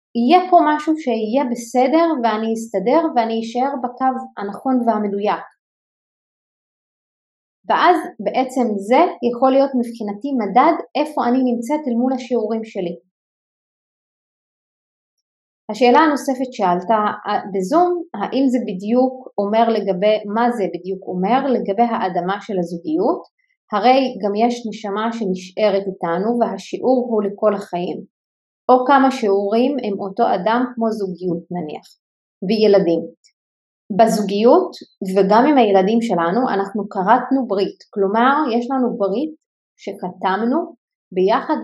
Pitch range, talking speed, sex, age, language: 195-255 Hz, 110 wpm, female, 30-49, Hebrew